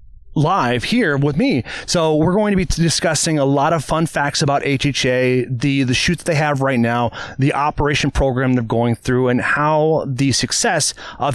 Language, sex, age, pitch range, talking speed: English, male, 30-49, 125-150 Hz, 185 wpm